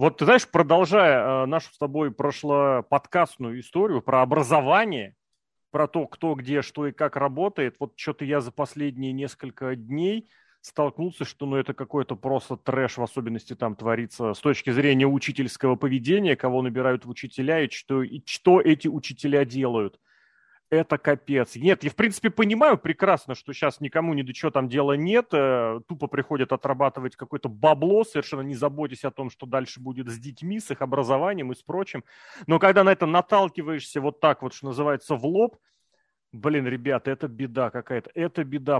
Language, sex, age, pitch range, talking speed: Russian, male, 30-49, 135-170 Hz, 170 wpm